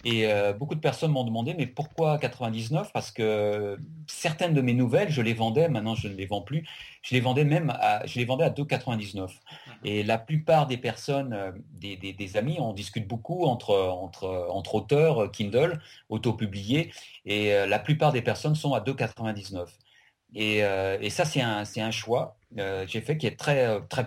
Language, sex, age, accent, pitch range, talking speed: French, male, 30-49, French, 110-145 Hz, 175 wpm